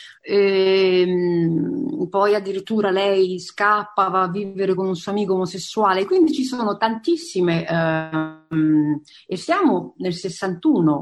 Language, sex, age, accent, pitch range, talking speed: Italian, female, 40-59, native, 165-245 Hz, 115 wpm